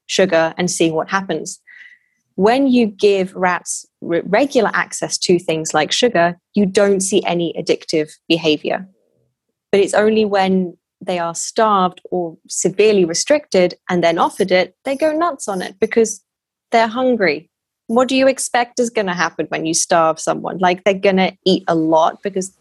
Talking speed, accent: 170 wpm, British